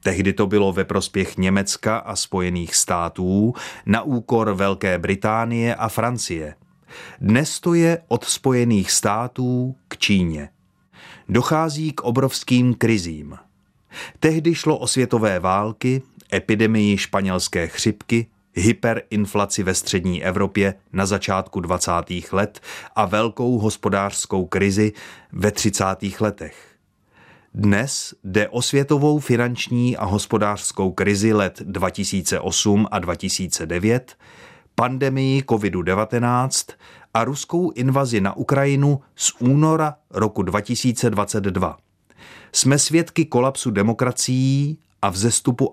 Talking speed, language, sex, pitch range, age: 105 wpm, Czech, male, 95-125 Hz, 30-49